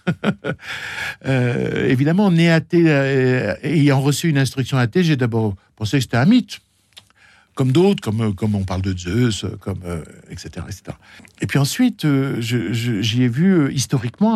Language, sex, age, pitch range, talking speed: French, male, 60-79, 110-145 Hz, 170 wpm